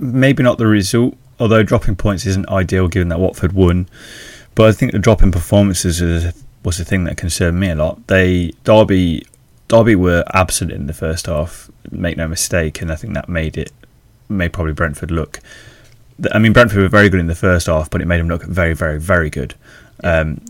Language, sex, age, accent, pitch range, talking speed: English, male, 20-39, British, 85-105 Hz, 205 wpm